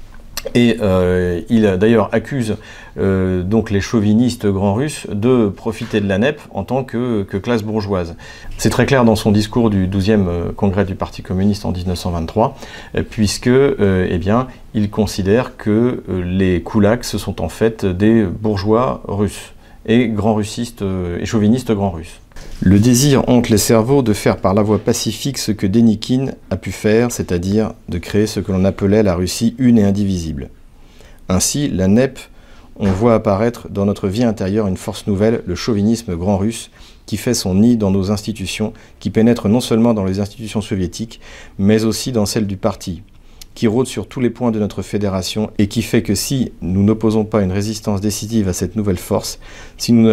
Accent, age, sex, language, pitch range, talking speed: French, 40-59, male, French, 95-115 Hz, 180 wpm